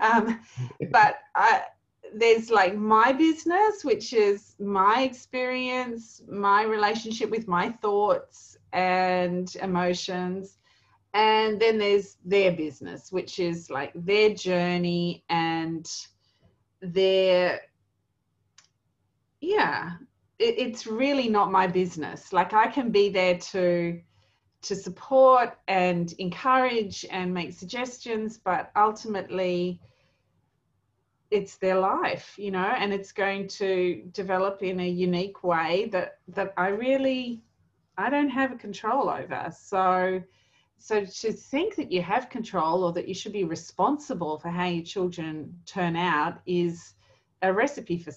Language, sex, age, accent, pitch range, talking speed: English, female, 30-49, Australian, 175-225 Hz, 120 wpm